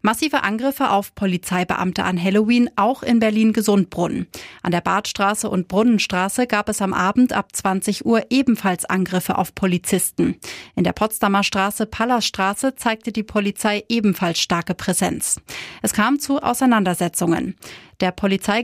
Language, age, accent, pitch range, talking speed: German, 30-49, German, 190-235 Hz, 135 wpm